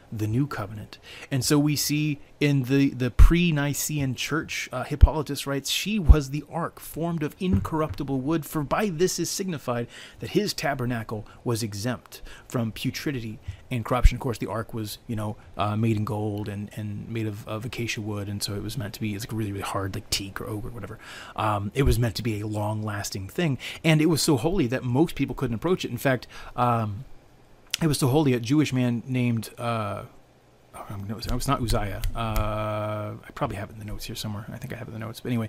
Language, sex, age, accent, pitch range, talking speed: English, male, 30-49, American, 110-130 Hz, 225 wpm